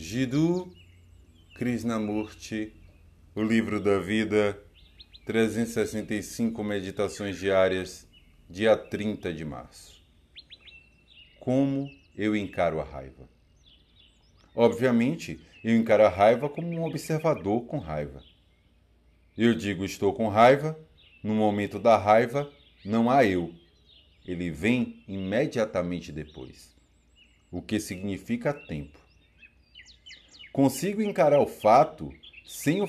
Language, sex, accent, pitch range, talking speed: Portuguese, male, Brazilian, 80-115 Hz, 100 wpm